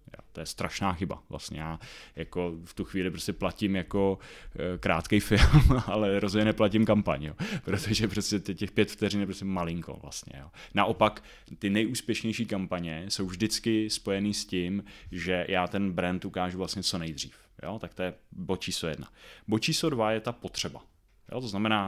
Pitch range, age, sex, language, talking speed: 95-115 Hz, 20-39, male, Czech, 175 wpm